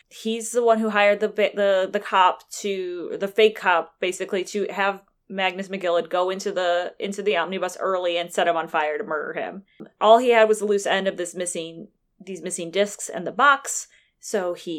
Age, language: 20-39, English